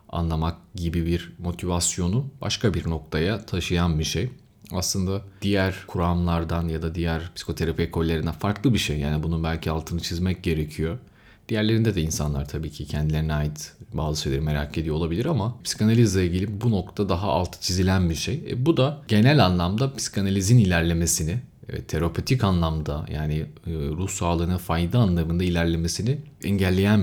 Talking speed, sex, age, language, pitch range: 145 wpm, male, 30-49, Turkish, 80-105 Hz